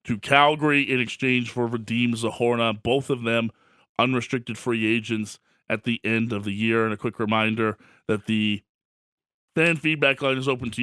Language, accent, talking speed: English, American, 170 wpm